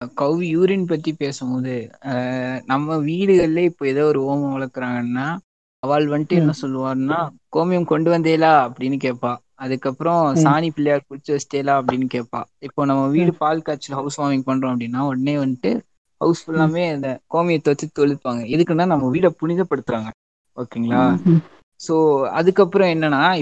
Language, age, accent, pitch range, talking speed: Tamil, 20-39, native, 130-160 Hz, 130 wpm